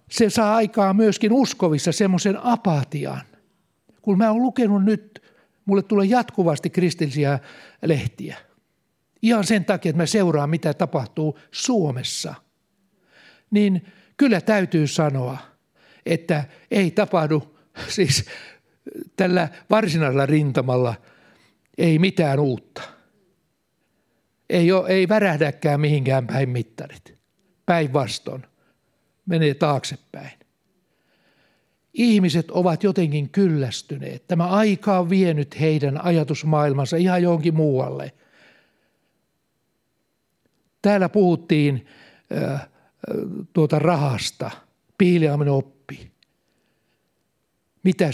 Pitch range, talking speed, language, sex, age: 150-200 Hz, 90 wpm, Finnish, male, 60-79